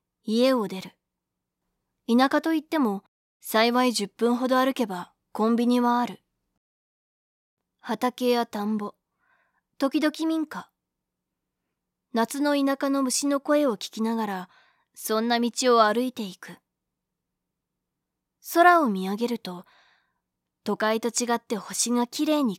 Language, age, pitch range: Japanese, 20-39, 205-260 Hz